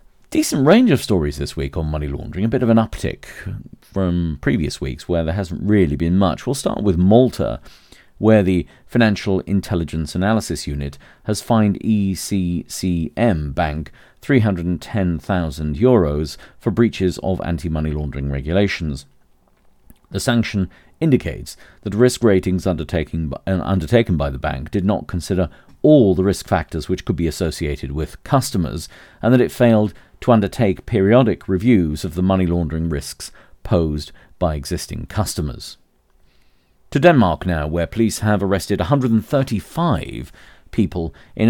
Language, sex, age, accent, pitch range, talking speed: English, male, 40-59, British, 80-110 Hz, 135 wpm